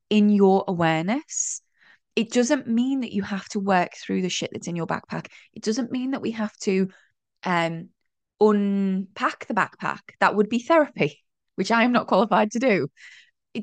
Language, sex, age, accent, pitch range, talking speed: English, female, 20-39, British, 170-220 Hz, 180 wpm